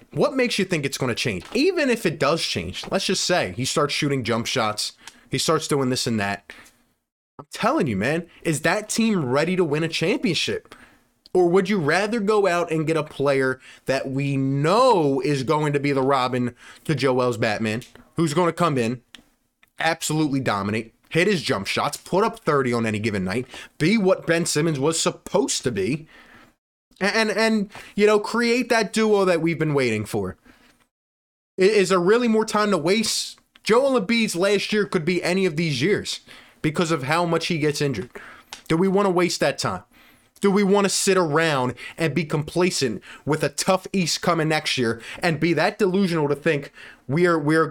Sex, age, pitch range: male, 20-39, 135-190 Hz